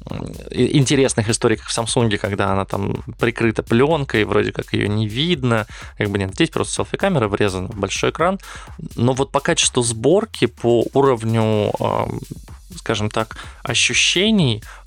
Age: 20-39